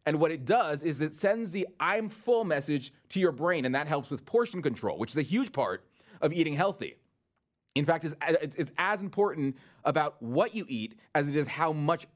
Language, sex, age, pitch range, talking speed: English, male, 30-49, 130-190 Hz, 205 wpm